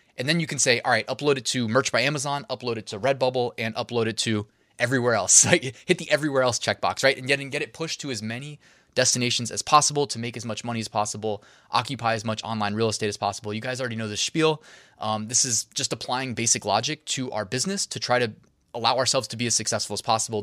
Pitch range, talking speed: 110-130 Hz, 240 wpm